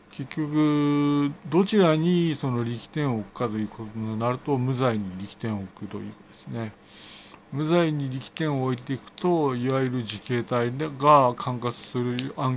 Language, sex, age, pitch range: Japanese, male, 50-69, 105-145 Hz